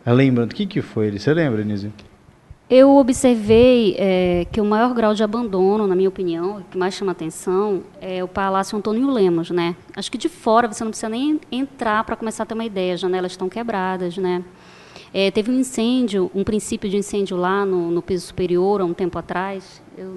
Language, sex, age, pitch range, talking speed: Portuguese, female, 20-39, 180-225 Hz, 205 wpm